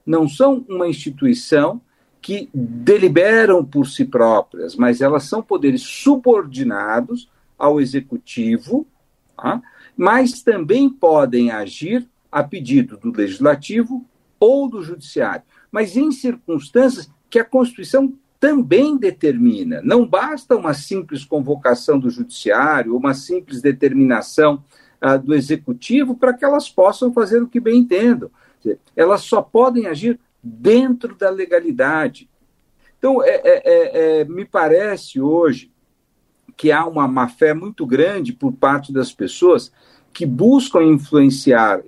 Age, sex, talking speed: 60-79, male, 115 wpm